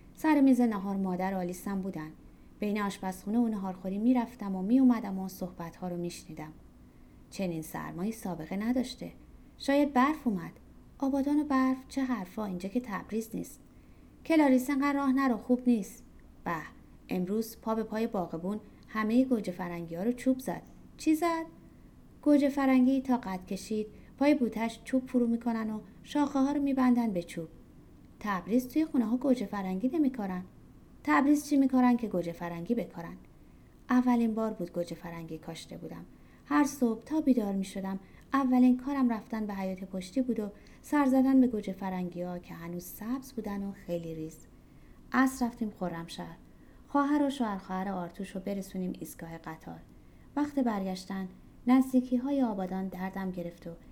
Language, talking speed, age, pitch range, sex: Persian, 155 wpm, 30-49, 185-255 Hz, female